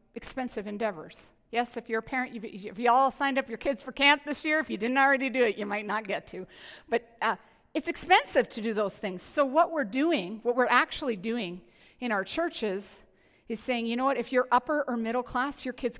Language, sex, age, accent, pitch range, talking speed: English, female, 50-69, American, 230-290 Hz, 230 wpm